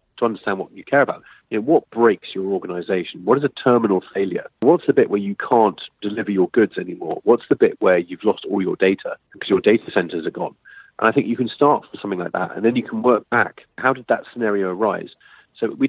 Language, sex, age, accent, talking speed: English, male, 40-59, British, 240 wpm